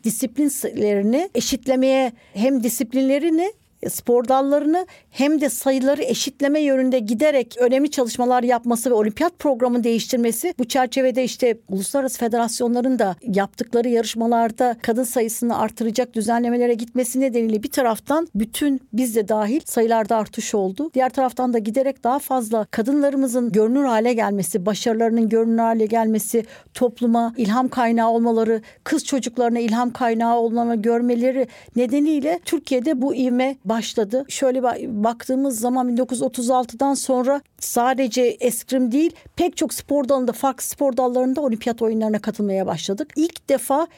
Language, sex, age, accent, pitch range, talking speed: Turkish, female, 60-79, native, 230-270 Hz, 125 wpm